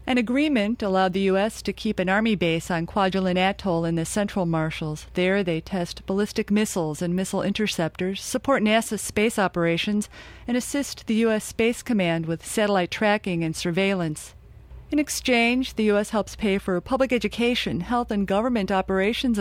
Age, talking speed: 40-59, 165 wpm